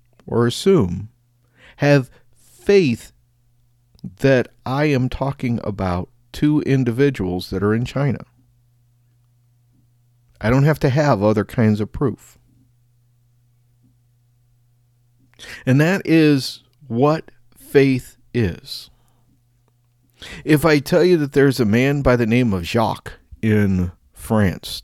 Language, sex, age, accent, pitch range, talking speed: English, male, 50-69, American, 105-130 Hz, 110 wpm